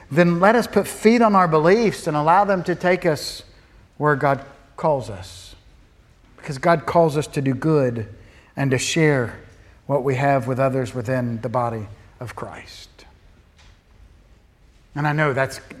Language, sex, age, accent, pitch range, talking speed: English, male, 50-69, American, 110-155 Hz, 160 wpm